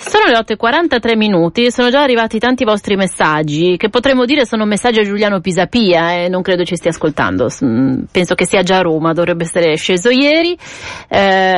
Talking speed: 190 wpm